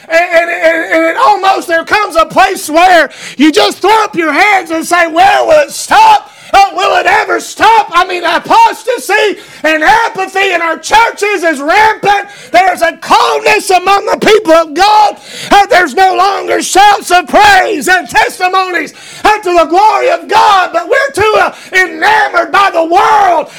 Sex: male